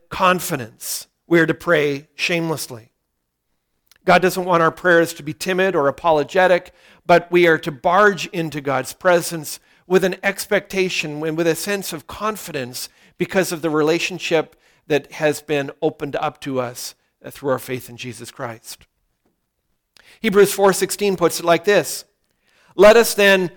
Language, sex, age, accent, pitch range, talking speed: English, male, 50-69, American, 150-195 Hz, 150 wpm